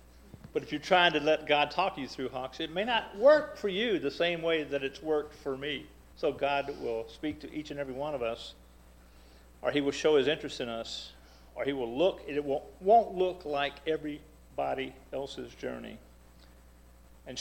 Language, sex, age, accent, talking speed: English, male, 50-69, American, 195 wpm